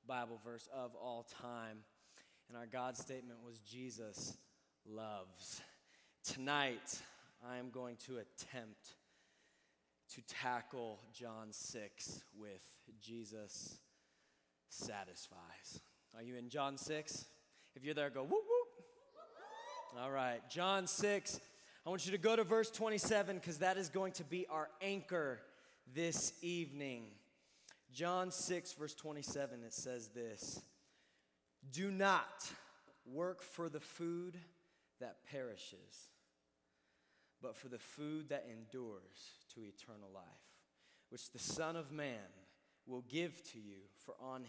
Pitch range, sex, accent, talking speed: 115-165 Hz, male, American, 125 wpm